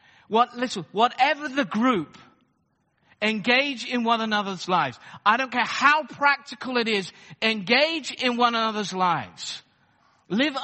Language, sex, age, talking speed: English, male, 50-69, 130 wpm